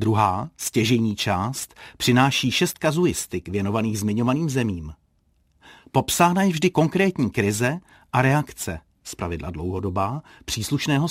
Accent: native